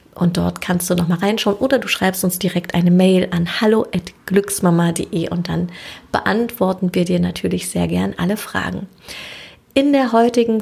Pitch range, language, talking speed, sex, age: 180-210 Hz, German, 165 wpm, female, 30-49